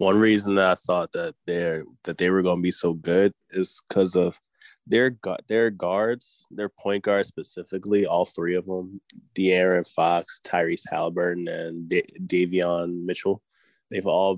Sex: male